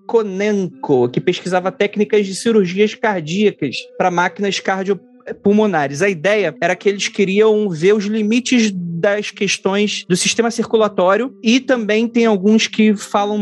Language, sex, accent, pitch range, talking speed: Portuguese, male, Brazilian, 180-225 Hz, 140 wpm